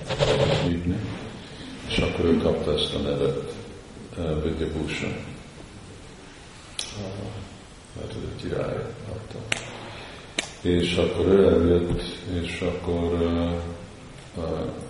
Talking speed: 75 wpm